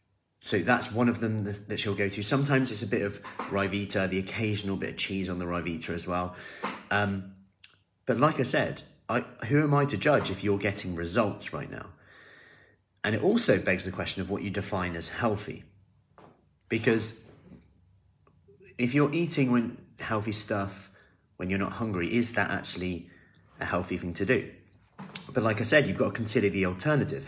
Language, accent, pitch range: English, British, 95-125 Hz